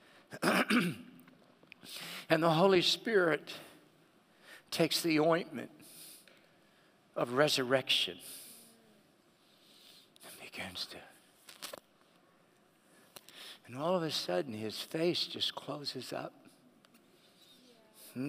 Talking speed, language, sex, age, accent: 75 wpm, English, male, 60-79, American